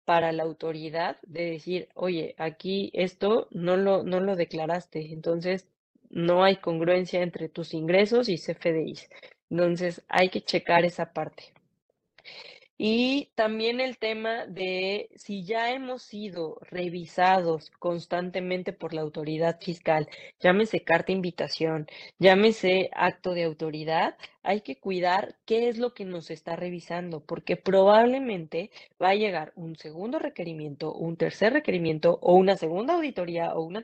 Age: 20-39